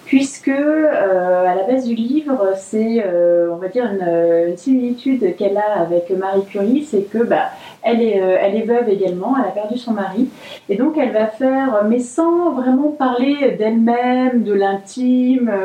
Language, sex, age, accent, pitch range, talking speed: French, female, 30-49, French, 190-240 Hz, 180 wpm